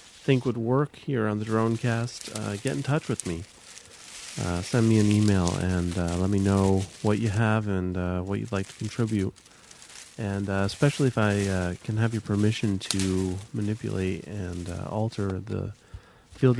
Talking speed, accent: 180 wpm, American